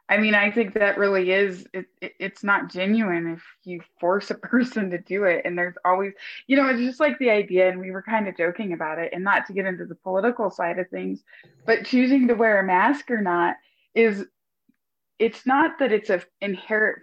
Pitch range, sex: 175-210 Hz, female